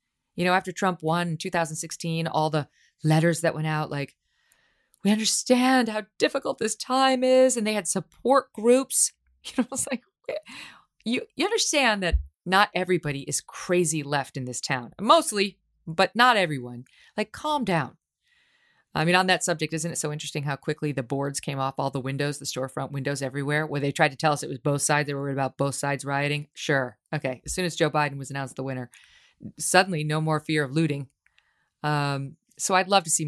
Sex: female